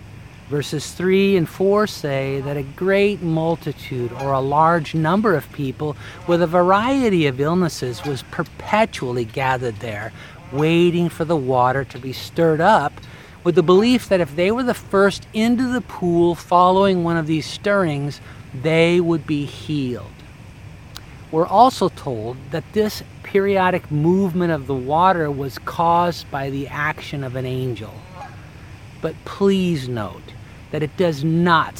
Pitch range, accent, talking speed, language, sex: 125-170 Hz, American, 145 wpm, English, male